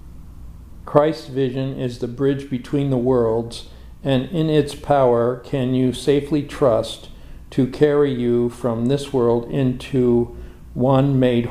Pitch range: 115-135 Hz